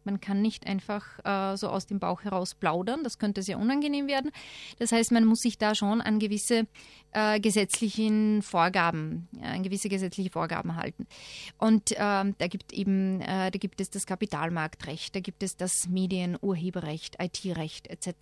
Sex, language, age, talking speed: female, German, 30-49, 150 wpm